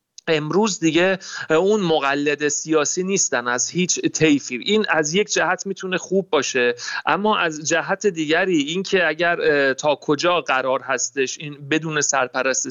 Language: Persian